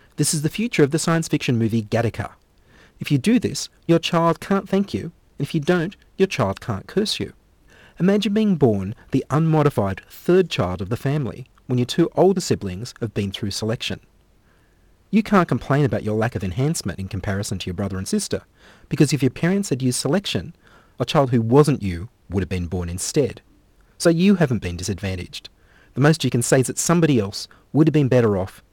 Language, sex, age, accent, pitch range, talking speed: English, male, 40-59, Australian, 95-155 Hz, 205 wpm